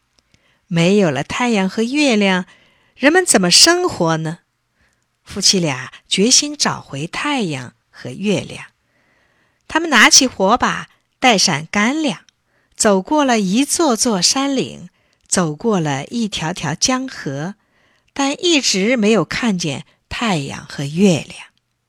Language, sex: Chinese, female